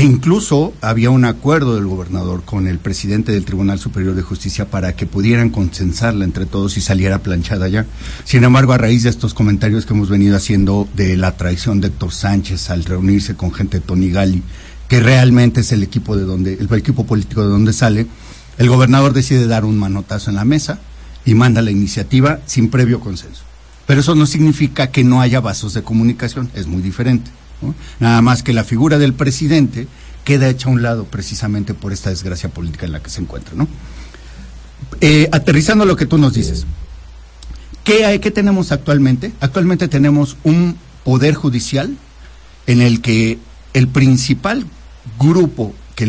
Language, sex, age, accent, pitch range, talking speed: Spanish, male, 50-69, Mexican, 95-130 Hz, 180 wpm